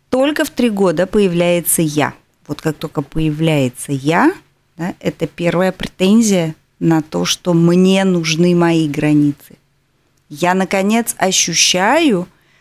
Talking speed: 115 wpm